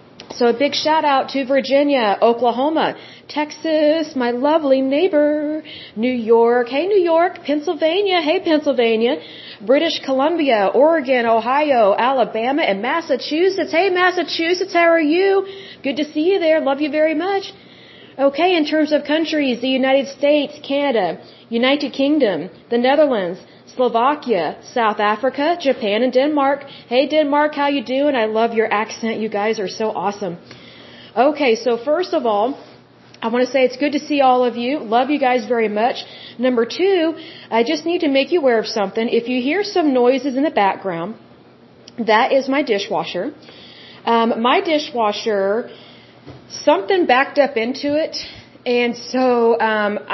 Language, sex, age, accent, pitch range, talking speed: Hindi, female, 40-59, American, 235-305 Hz, 155 wpm